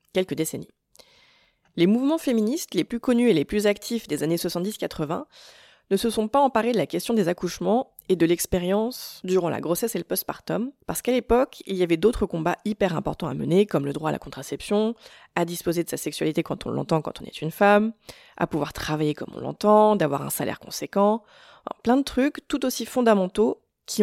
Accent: French